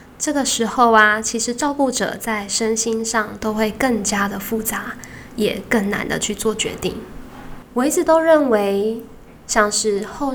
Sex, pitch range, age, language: female, 205-235 Hz, 10-29, Chinese